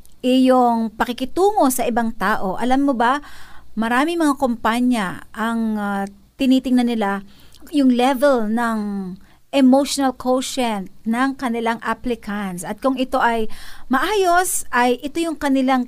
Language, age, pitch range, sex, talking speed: Filipino, 50-69, 235-290 Hz, female, 120 wpm